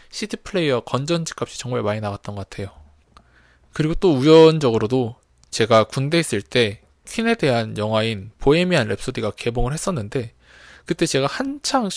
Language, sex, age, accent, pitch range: Korean, male, 20-39, native, 110-155 Hz